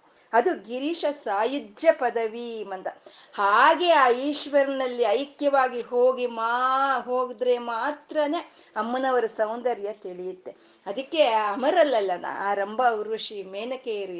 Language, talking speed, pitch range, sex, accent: Kannada, 95 wpm, 215-280 Hz, female, native